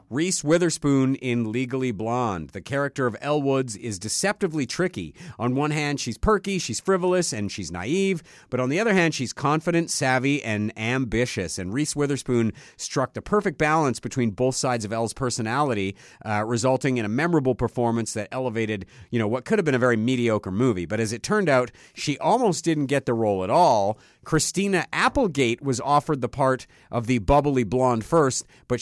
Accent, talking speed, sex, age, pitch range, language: American, 185 wpm, male, 50-69, 110-145 Hz, English